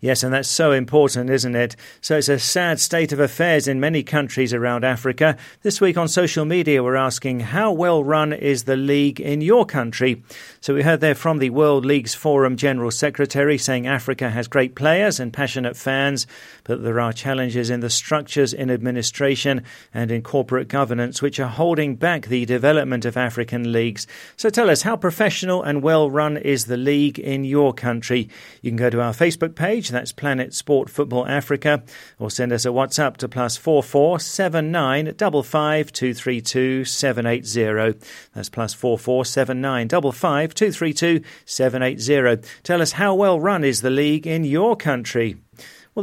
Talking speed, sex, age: 170 wpm, male, 40-59